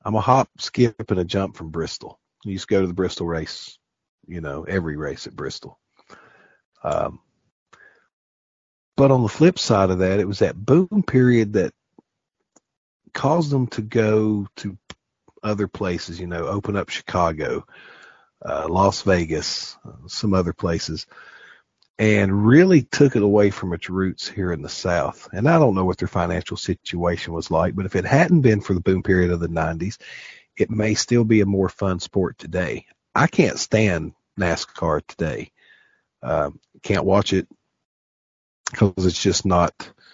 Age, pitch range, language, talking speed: 50-69, 85-110 Hz, English, 165 wpm